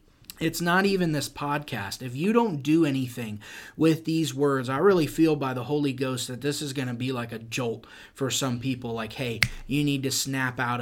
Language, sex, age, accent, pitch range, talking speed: English, male, 30-49, American, 130-155 Hz, 215 wpm